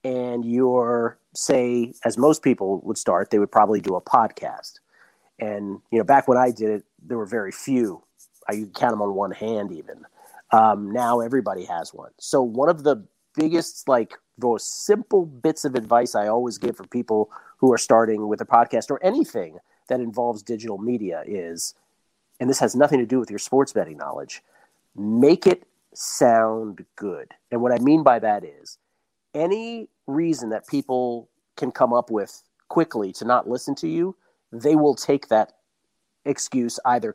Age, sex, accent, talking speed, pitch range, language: 40-59, male, American, 180 wpm, 115-145 Hz, English